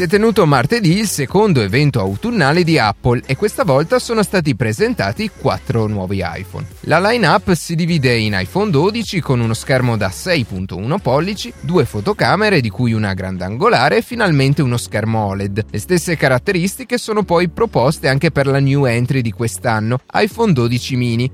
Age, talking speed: 30-49, 165 wpm